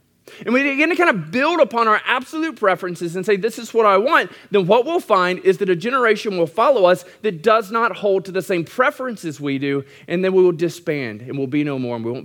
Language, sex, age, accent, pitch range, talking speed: English, male, 30-49, American, 140-190 Hz, 255 wpm